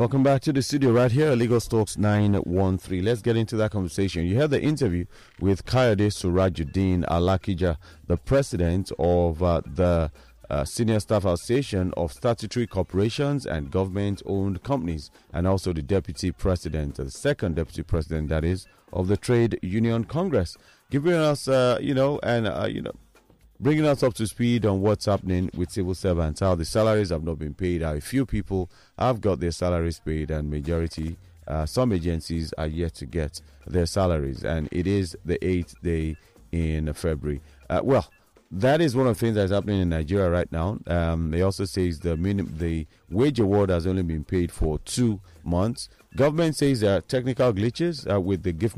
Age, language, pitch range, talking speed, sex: 40-59, English, 85-115 Hz, 185 wpm, male